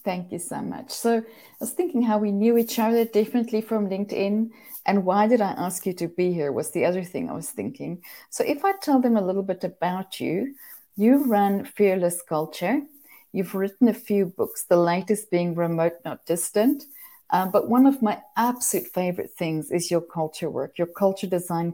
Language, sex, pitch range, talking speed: English, female, 165-220 Hz, 200 wpm